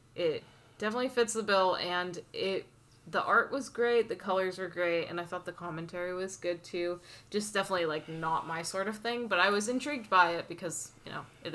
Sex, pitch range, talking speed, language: female, 170-205 Hz, 215 wpm, English